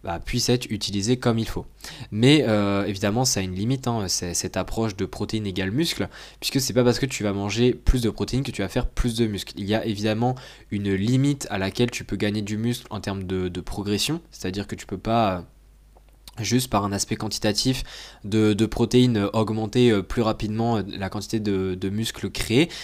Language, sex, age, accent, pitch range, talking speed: French, male, 20-39, French, 100-120 Hz, 215 wpm